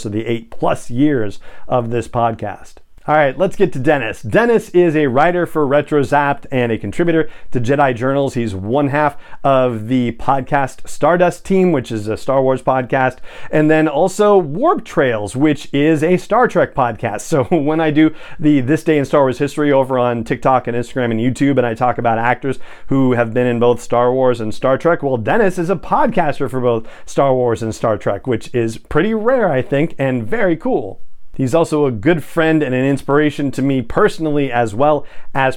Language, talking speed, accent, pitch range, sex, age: English, 200 wpm, American, 120-155 Hz, male, 40-59